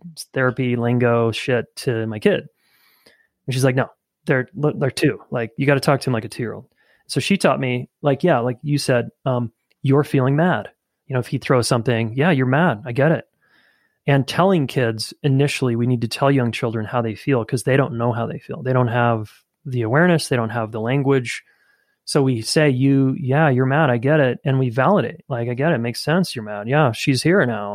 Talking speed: 225 wpm